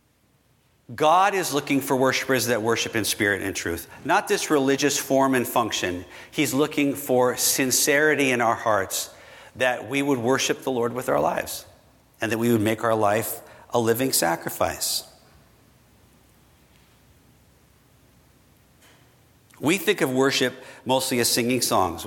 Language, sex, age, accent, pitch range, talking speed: English, male, 50-69, American, 110-135 Hz, 140 wpm